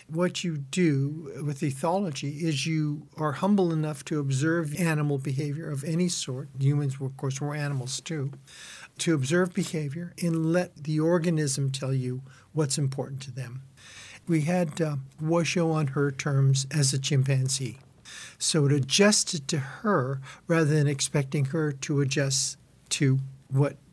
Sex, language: male, English